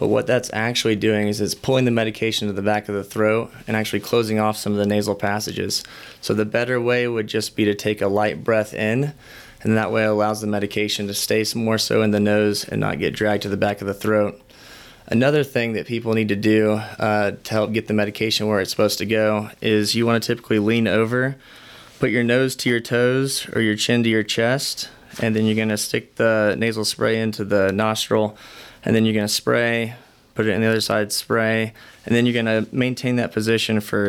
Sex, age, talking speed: male, 20-39, 235 wpm